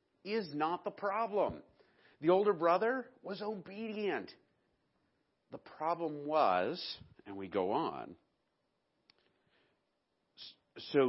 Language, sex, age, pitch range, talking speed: English, male, 50-69, 100-130 Hz, 90 wpm